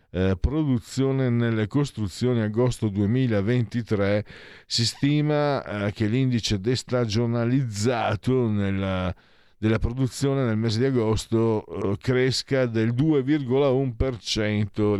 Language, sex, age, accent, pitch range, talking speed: Italian, male, 50-69, native, 95-115 Hz, 90 wpm